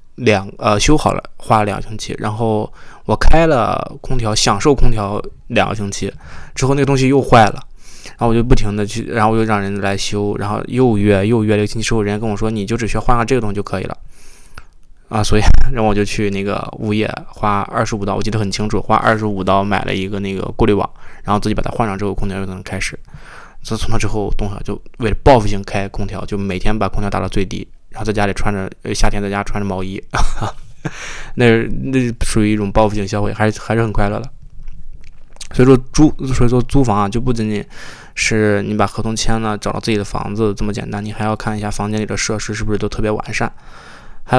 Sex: male